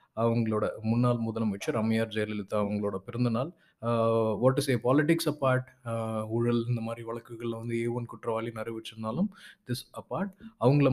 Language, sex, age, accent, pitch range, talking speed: Tamil, male, 20-39, native, 110-130 Hz, 130 wpm